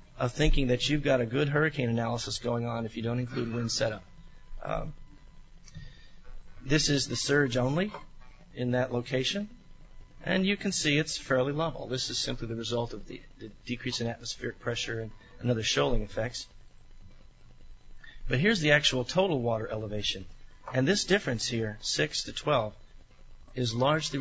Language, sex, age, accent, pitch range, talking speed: English, male, 40-59, American, 115-140 Hz, 160 wpm